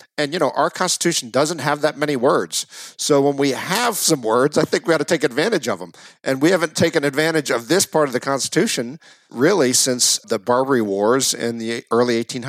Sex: male